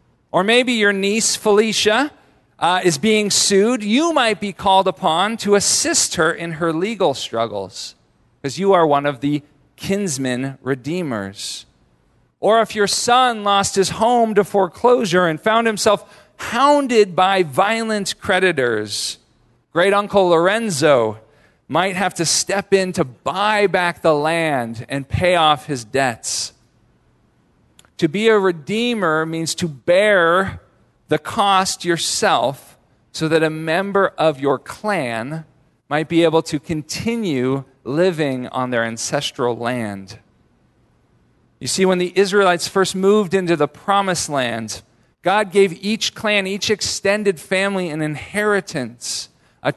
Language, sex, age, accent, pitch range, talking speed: English, male, 40-59, American, 140-200 Hz, 135 wpm